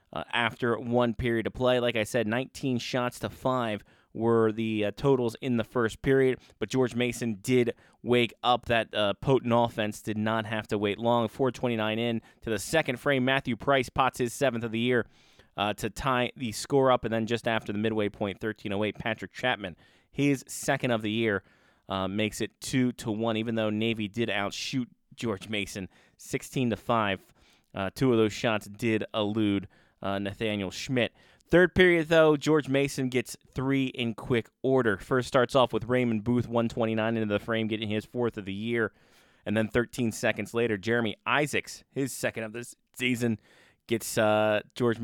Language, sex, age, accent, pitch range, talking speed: English, male, 20-39, American, 105-125 Hz, 185 wpm